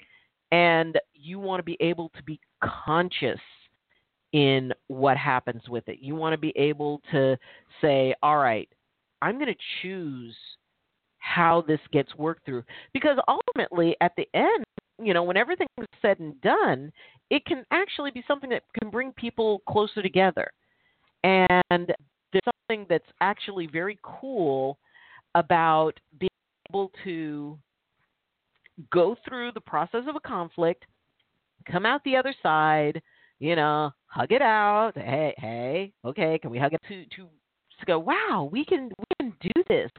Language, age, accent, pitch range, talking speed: English, 50-69, American, 150-230 Hz, 155 wpm